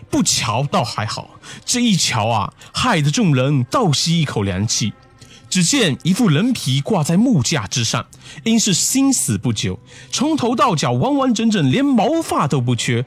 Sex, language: male, Chinese